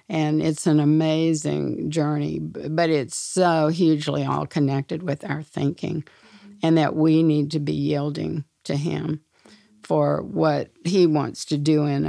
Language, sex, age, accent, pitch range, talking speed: English, female, 60-79, American, 140-160 Hz, 150 wpm